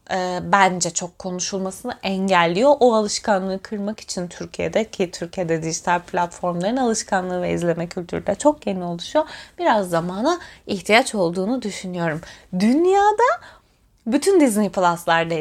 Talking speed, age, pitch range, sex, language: 115 wpm, 20-39, 185-245 Hz, female, Turkish